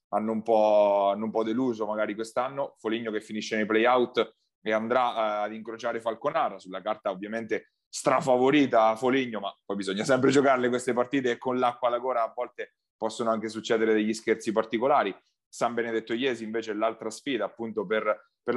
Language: Italian